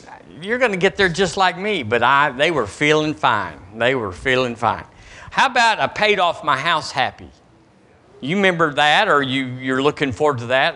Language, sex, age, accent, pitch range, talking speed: English, male, 50-69, American, 120-155 Hz, 200 wpm